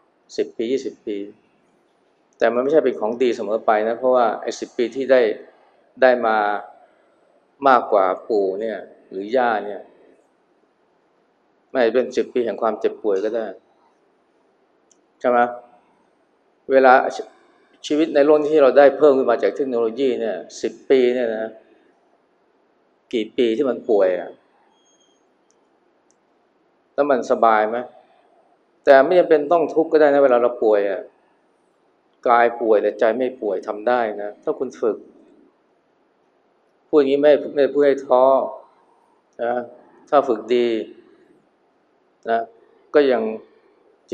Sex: male